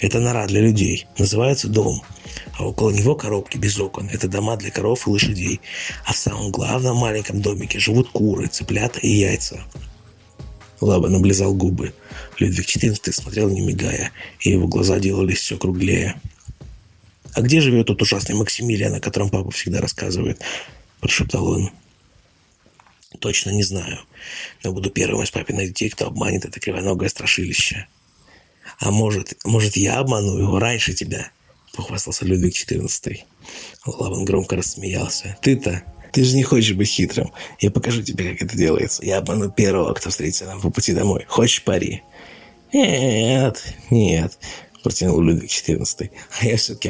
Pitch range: 95-115 Hz